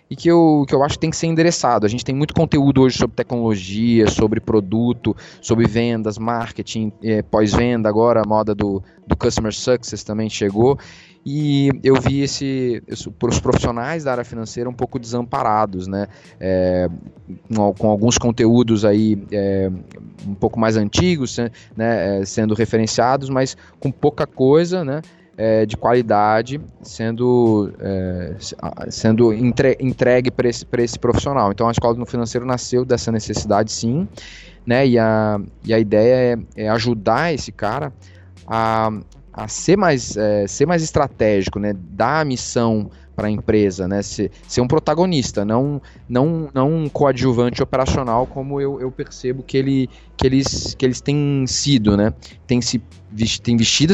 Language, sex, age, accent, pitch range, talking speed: Portuguese, male, 20-39, Brazilian, 105-135 Hz, 160 wpm